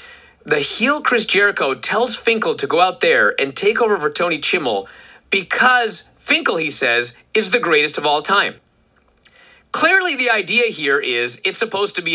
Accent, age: American, 40-59